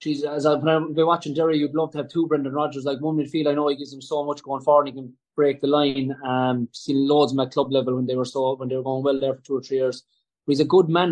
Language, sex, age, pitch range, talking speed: English, male, 20-39, 140-175 Hz, 325 wpm